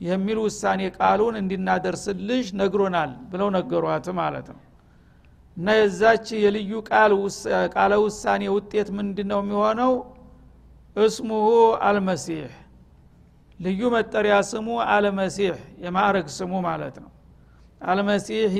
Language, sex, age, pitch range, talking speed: Amharic, male, 60-79, 180-210 Hz, 95 wpm